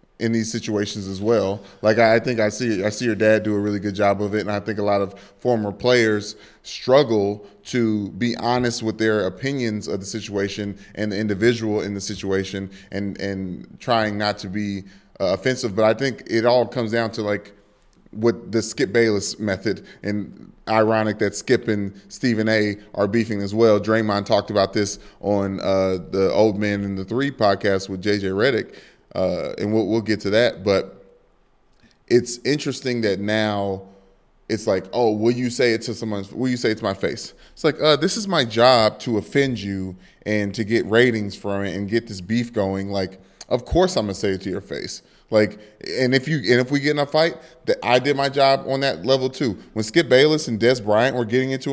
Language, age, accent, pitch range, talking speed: English, 20-39, American, 100-120 Hz, 210 wpm